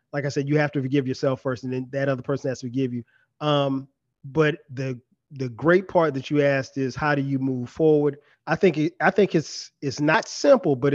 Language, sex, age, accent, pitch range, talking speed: English, male, 30-49, American, 135-170 Hz, 235 wpm